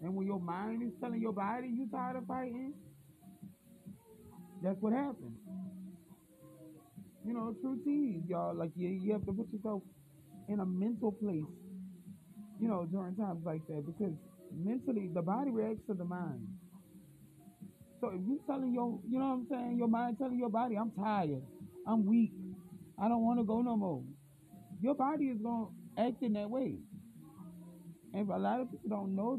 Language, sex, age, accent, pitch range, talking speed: English, male, 30-49, American, 170-215 Hz, 180 wpm